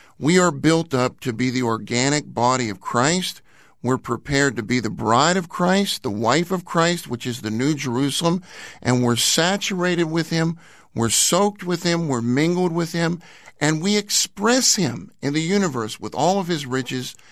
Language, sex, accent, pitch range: English, male, American, 130-185 Hz